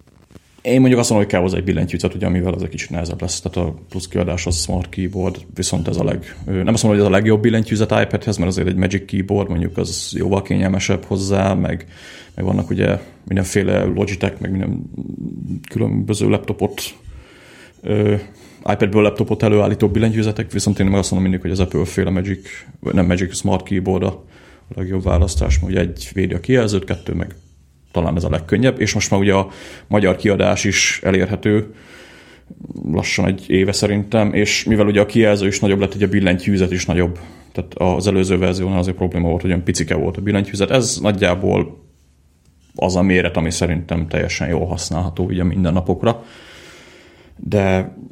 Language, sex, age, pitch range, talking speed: Hungarian, male, 30-49, 90-100 Hz, 180 wpm